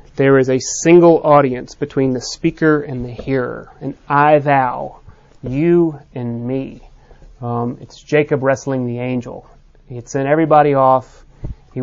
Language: English